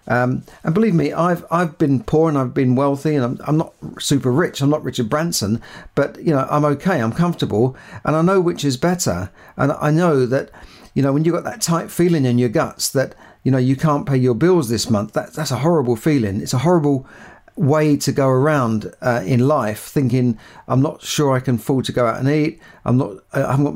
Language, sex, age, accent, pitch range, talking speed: English, male, 50-69, British, 125-155 Hz, 230 wpm